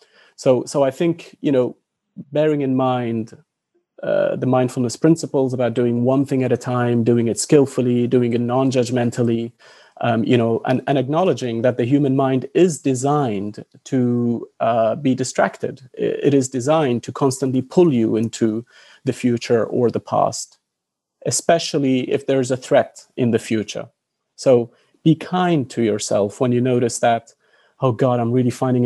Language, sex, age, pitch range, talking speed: English, male, 30-49, 115-135 Hz, 160 wpm